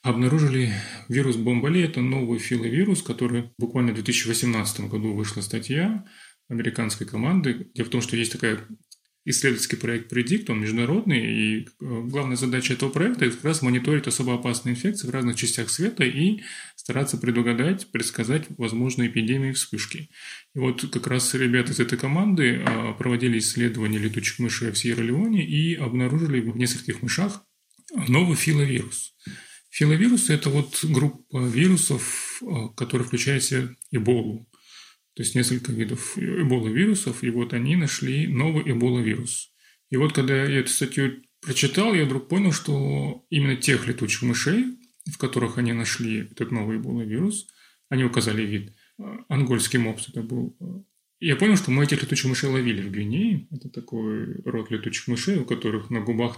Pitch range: 120-150 Hz